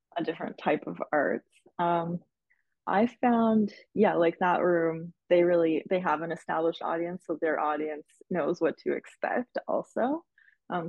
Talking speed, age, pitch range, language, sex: 155 wpm, 20-39, 165-195 Hz, English, female